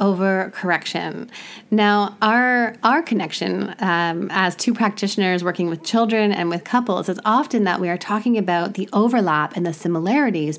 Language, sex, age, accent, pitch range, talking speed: English, female, 30-49, American, 175-220 Hz, 160 wpm